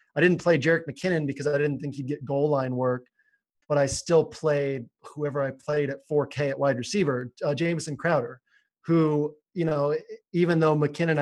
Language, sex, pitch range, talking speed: English, male, 135-160 Hz, 185 wpm